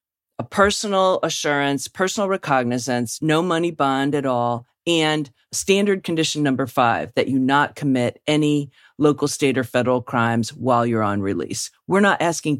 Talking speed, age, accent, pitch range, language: 155 wpm, 40-59, American, 140-190 Hz, English